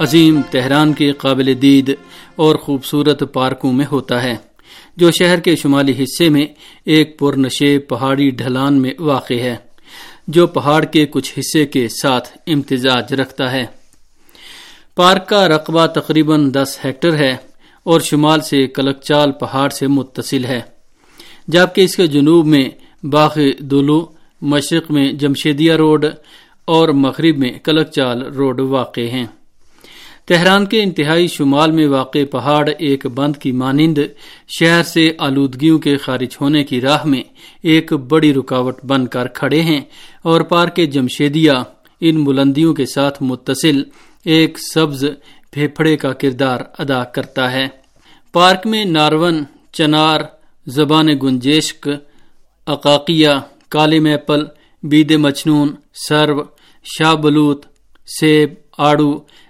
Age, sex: 50-69, male